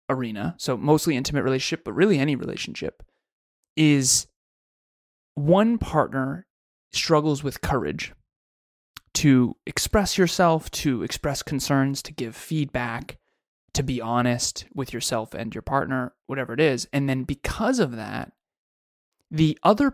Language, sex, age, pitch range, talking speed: English, male, 20-39, 125-160 Hz, 125 wpm